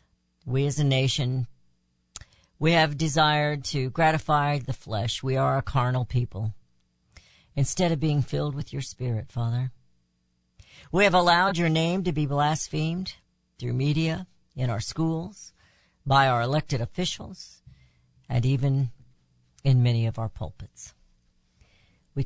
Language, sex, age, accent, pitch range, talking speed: English, female, 50-69, American, 110-140 Hz, 130 wpm